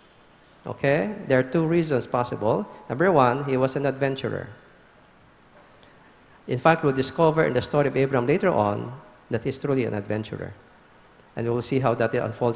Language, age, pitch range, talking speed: English, 50-69, 125-165 Hz, 160 wpm